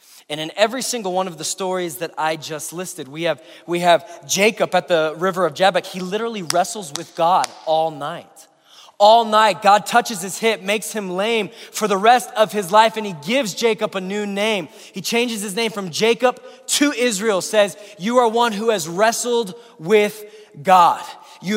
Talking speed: 190 wpm